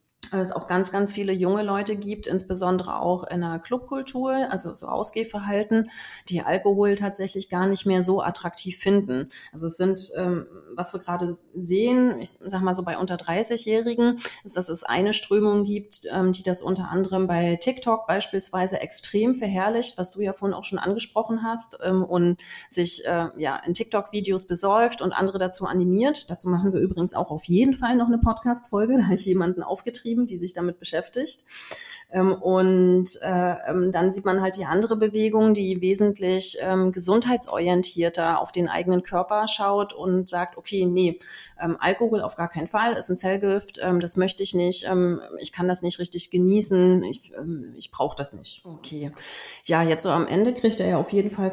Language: German